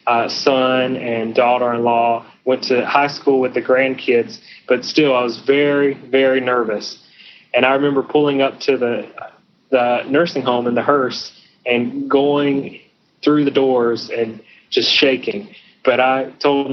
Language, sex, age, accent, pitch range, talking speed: English, male, 20-39, American, 125-140 Hz, 150 wpm